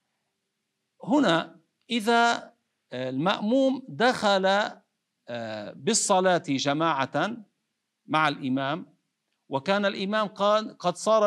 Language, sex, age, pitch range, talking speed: Arabic, male, 50-69, 145-200 Hz, 70 wpm